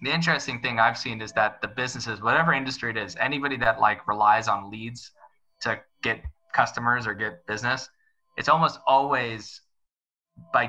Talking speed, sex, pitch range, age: 165 wpm, male, 105-125 Hz, 20-39